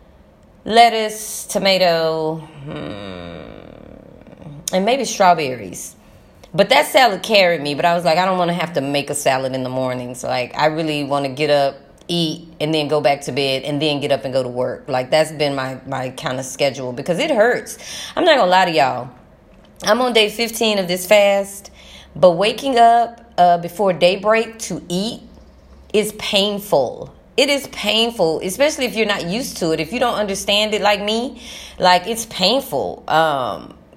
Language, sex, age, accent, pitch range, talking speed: English, female, 20-39, American, 155-220 Hz, 180 wpm